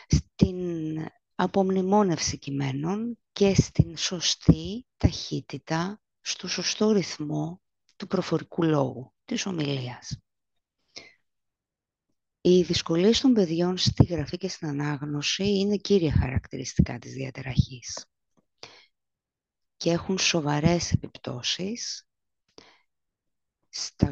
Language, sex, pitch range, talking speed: Greek, female, 145-185 Hz, 85 wpm